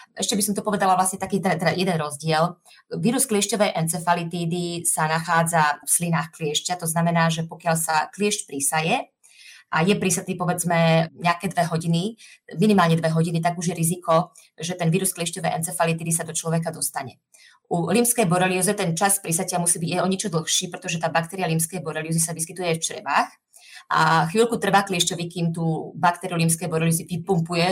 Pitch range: 165-190 Hz